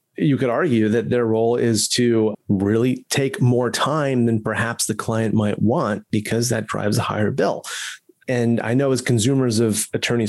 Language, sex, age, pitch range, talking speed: English, male, 30-49, 110-130 Hz, 180 wpm